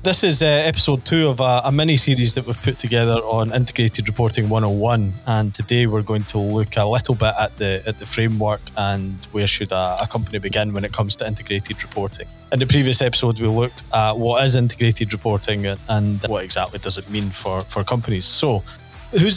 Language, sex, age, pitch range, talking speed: English, male, 20-39, 105-125 Hz, 205 wpm